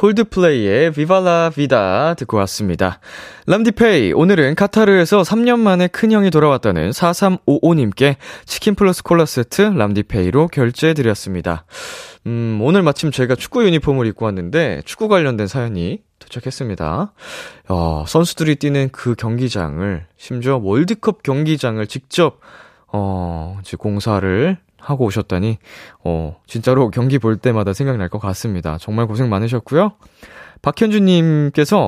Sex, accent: male, native